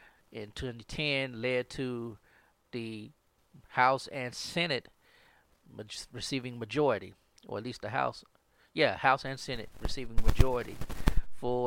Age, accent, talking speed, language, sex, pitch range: 40-59, American, 115 wpm, English, male, 120-150 Hz